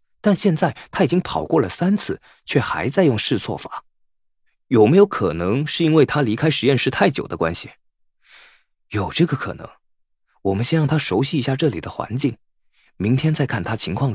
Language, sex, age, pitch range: Chinese, male, 20-39, 95-150 Hz